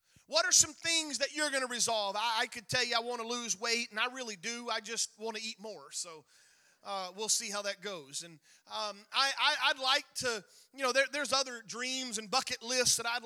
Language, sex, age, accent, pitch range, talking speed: English, male, 30-49, American, 205-270 Hz, 230 wpm